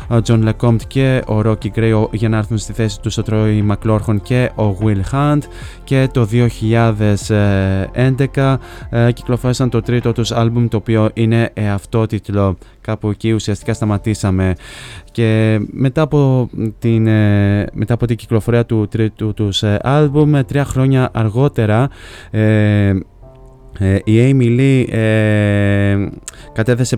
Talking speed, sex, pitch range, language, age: 140 wpm, male, 105-120 Hz, Greek, 20-39